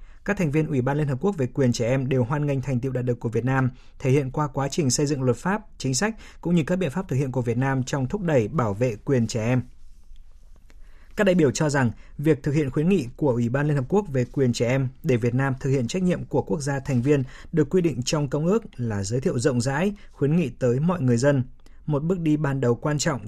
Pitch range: 120-150 Hz